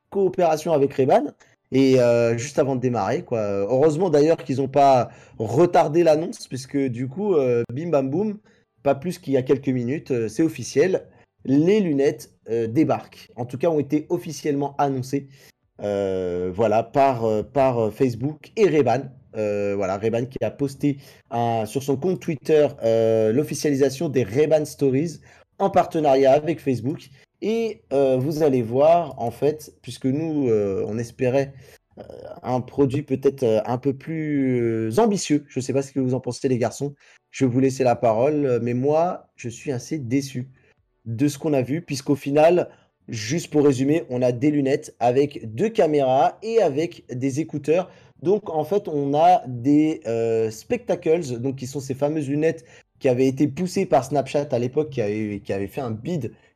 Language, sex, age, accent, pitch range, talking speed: French, male, 20-39, French, 125-155 Hz, 175 wpm